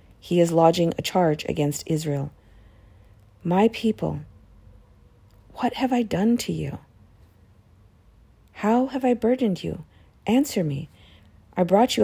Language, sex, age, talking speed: English, female, 40-59, 125 wpm